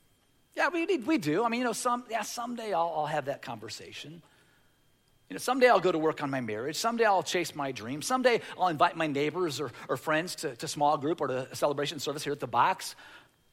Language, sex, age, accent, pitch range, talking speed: English, male, 50-69, American, 125-160 Hz, 230 wpm